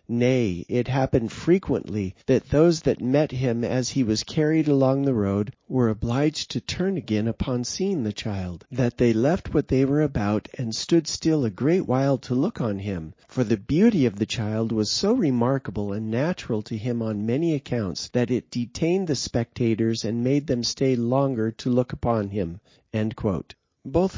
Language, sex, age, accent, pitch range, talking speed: English, male, 40-59, American, 115-140 Hz, 180 wpm